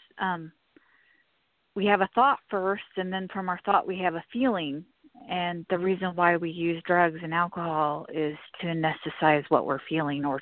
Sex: female